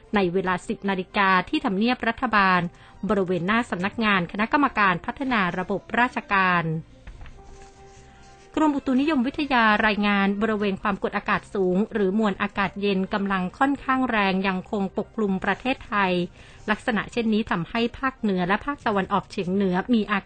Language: Thai